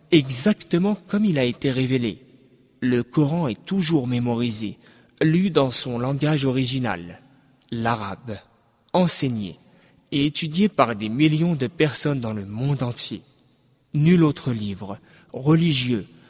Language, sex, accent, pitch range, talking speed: French, male, French, 125-165 Hz, 120 wpm